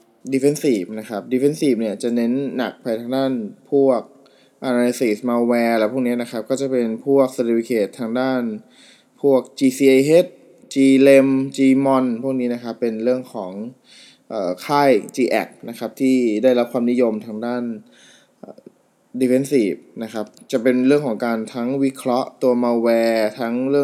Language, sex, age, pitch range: Thai, male, 20-39, 110-130 Hz